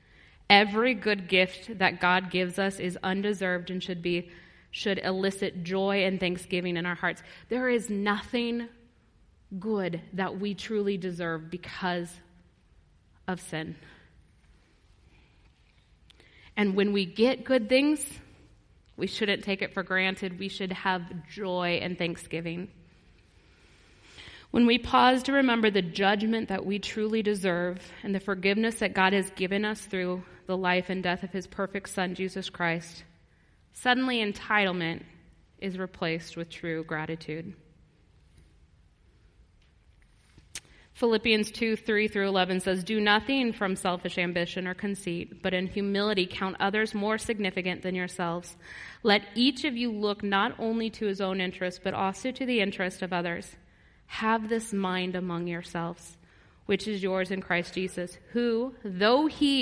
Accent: American